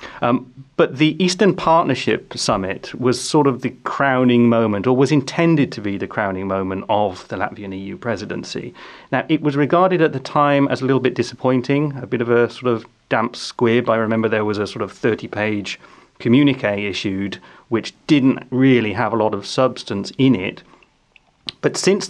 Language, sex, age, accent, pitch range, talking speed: English, male, 30-49, British, 115-145 Hz, 180 wpm